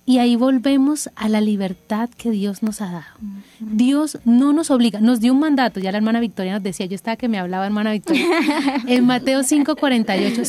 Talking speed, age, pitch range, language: 205 wpm, 30-49, 215-270 Hz, Spanish